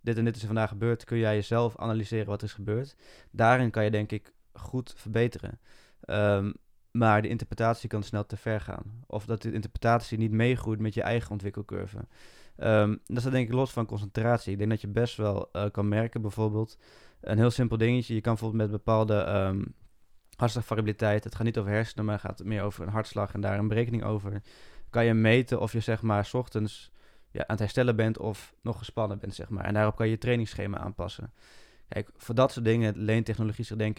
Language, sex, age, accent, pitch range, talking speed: Dutch, male, 20-39, Dutch, 105-115 Hz, 215 wpm